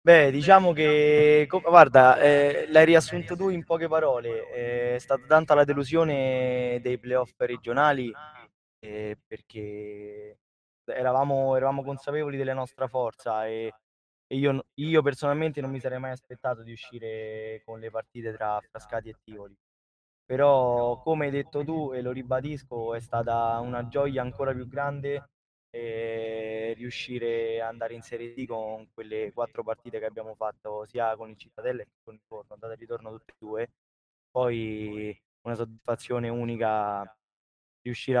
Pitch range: 110-130 Hz